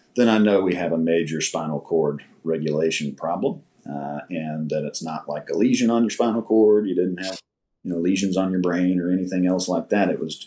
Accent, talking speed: American, 225 wpm